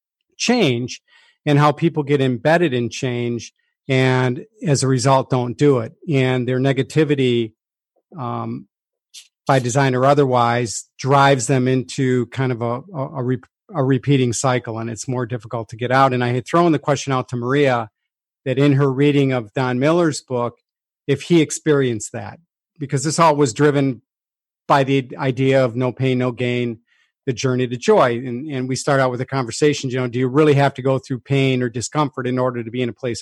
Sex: male